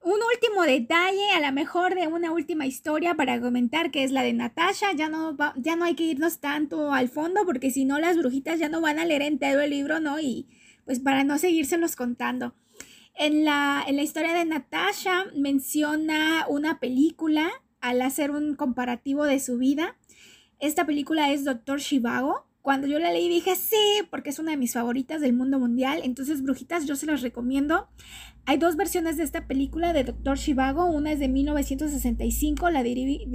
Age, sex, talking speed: 20-39, female, 185 wpm